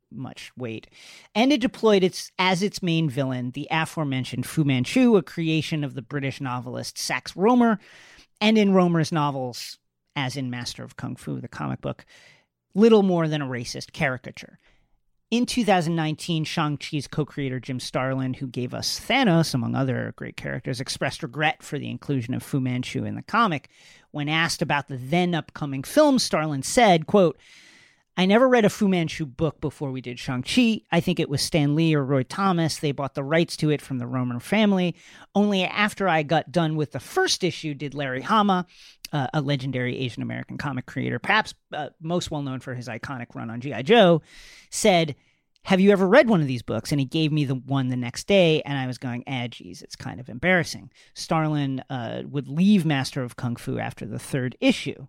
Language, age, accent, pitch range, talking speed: English, 40-59, American, 130-180 Hz, 190 wpm